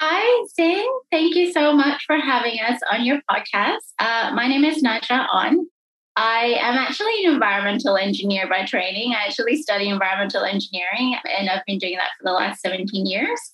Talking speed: 180 wpm